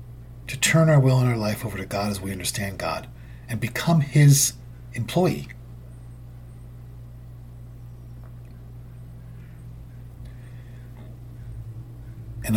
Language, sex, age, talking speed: English, male, 50-69, 90 wpm